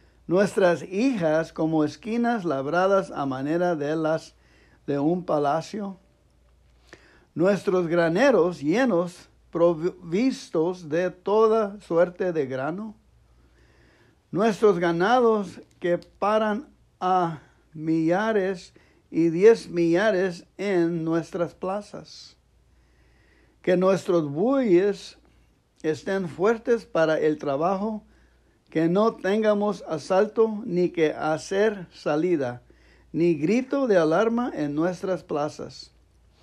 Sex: male